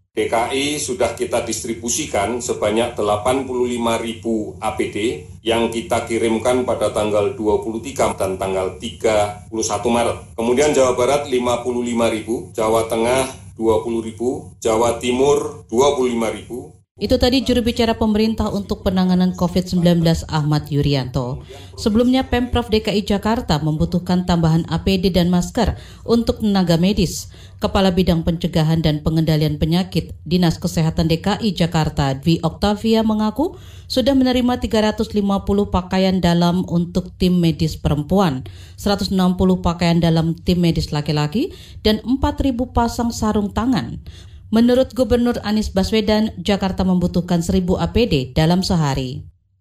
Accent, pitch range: native, 135-215 Hz